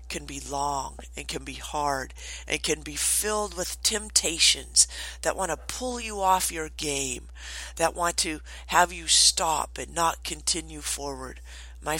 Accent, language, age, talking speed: American, English, 50-69, 160 wpm